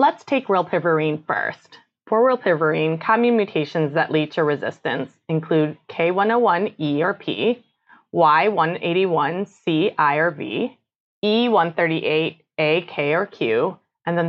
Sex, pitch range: female, 150-180 Hz